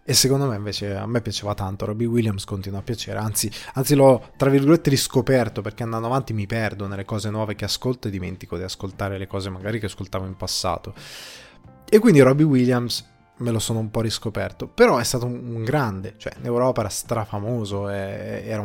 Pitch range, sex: 105-135 Hz, male